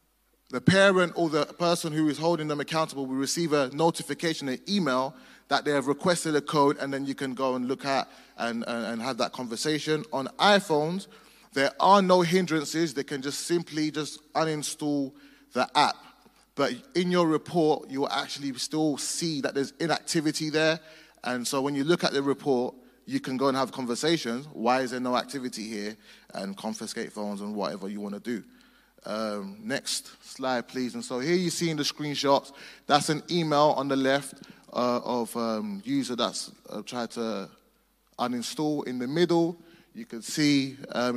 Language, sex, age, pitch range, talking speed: English, male, 20-39, 125-155 Hz, 185 wpm